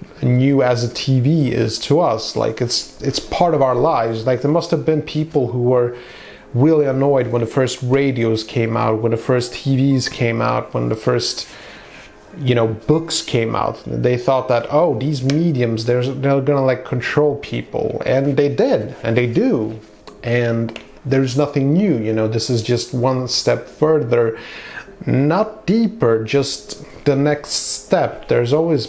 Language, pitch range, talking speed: English, 115-140 Hz, 170 wpm